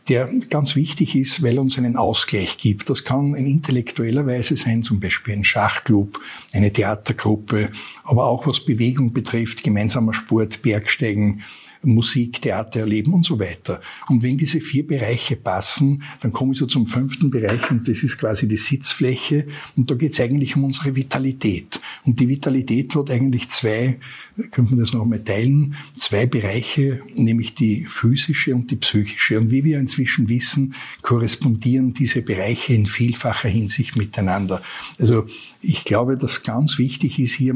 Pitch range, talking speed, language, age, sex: 115-135 Hz, 165 wpm, German, 60-79, male